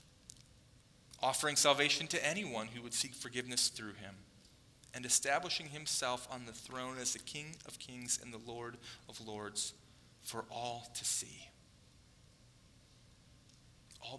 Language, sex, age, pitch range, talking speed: English, male, 40-59, 110-130 Hz, 130 wpm